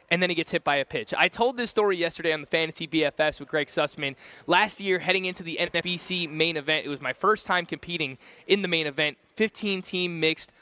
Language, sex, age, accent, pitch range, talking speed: English, male, 20-39, American, 145-185 Hz, 225 wpm